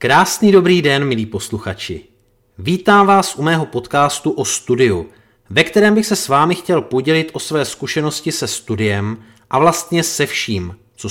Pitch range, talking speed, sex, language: 110-155 Hz, 160 wpm, male, Czech